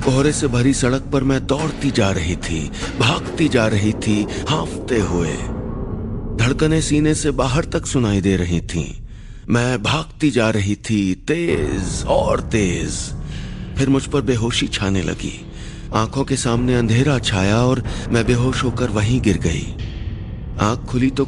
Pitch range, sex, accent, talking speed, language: 105-135 Hz, male, native, 150 wpm, Hindi